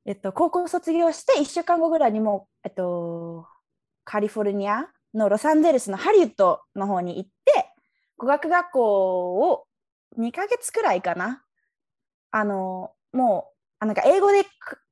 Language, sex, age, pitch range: Japanese, female, 20-39, 205-315 Hz